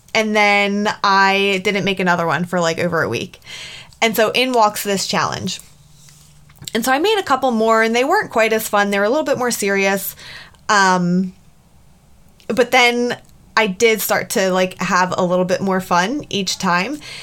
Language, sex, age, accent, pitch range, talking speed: English, female, 20-39, American, 190-240 Hz, 190 wpm